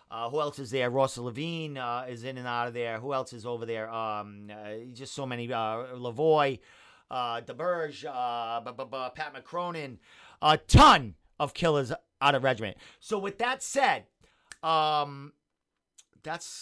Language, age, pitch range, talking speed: English, 40-59, 120-175 Hz, 160 wpm